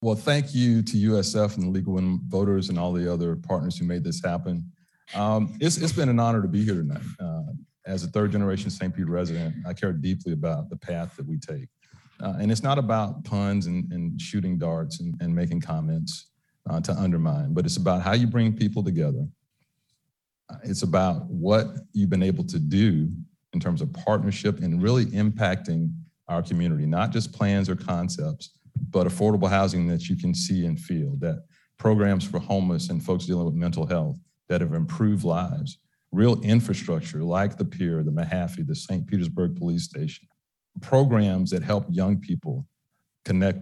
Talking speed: 185 wpm